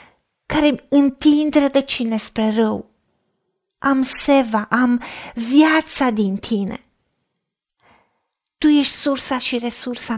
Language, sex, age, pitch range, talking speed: Romanian, female, 40-59, 215-275 Hz, 95 wpm